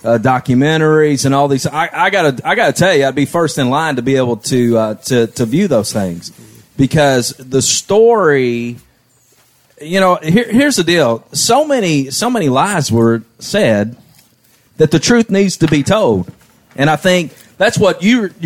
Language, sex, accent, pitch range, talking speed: English, male, American, 130-190 Hz, 180 wpm